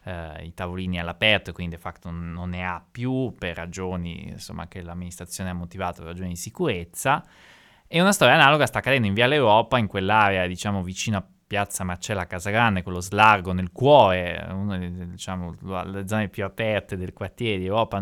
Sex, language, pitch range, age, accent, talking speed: male, Italian, 90-110 Hz, 20-39, native, 190 wpm